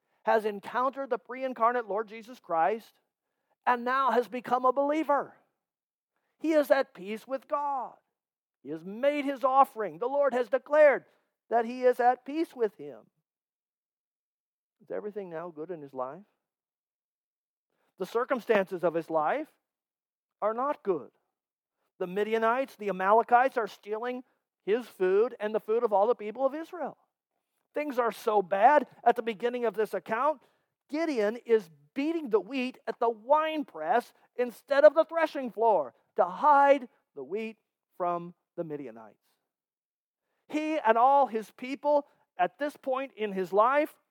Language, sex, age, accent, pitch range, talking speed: English, male, 50-69, American, 205-280 Hz, 150 wpm